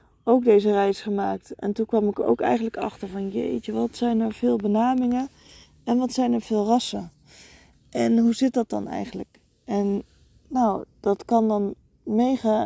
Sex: female